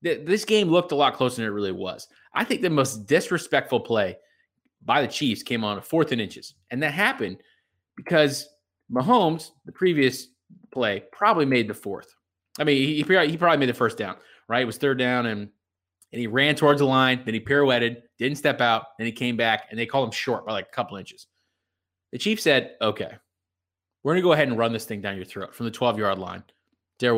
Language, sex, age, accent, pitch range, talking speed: English, male, 20-39, American, 105-140 Hz, 215 wpm